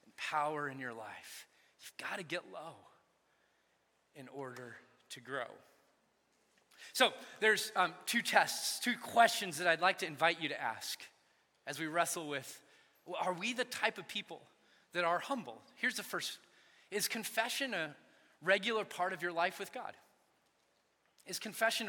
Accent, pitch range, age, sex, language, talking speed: American, 170-220 Hz, 30-49, male, English, 155 wpm